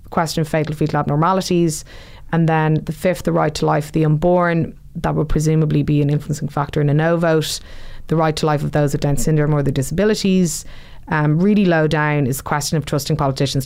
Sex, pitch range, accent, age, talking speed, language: female, 145-170 Hz, Irish, 20-39, 215 wpm, English